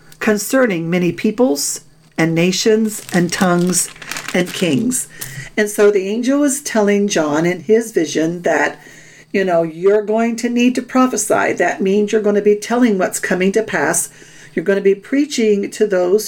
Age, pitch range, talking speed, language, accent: 50-69, 185-235 Hz, 170 wpm, English, American